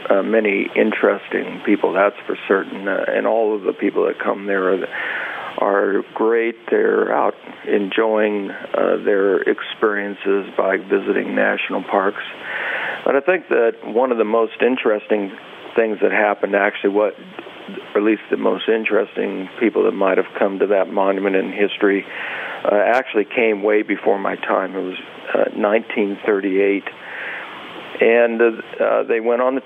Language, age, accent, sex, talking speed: English, 50-69, American, male, 155 wpm